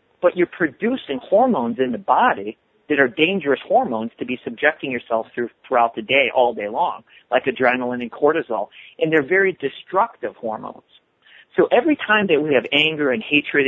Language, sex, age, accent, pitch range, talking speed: English, male, 40-59, American, 120-165 Hz, 175 wpm